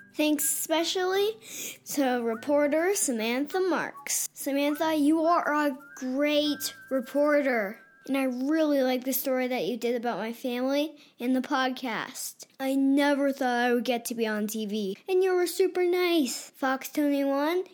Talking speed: 150 wpm